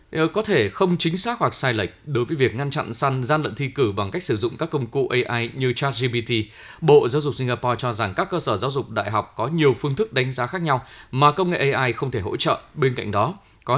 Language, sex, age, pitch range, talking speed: Vietnamese, male, 20-39, 115-145 Hz, 265 wpm